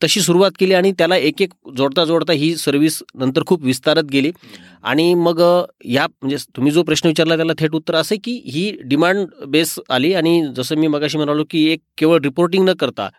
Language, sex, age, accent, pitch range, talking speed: Marathi, male, 40-59, native, 140-190 Hz, 170 wpm